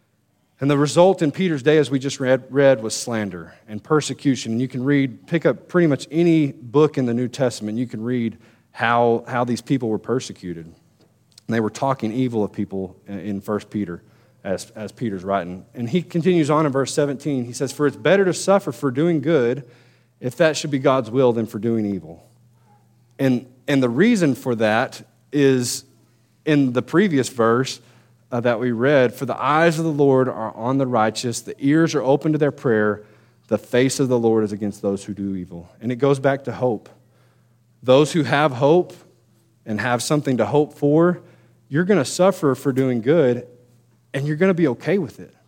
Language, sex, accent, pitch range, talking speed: English, male, American, 115-145 Hz, 200 wpm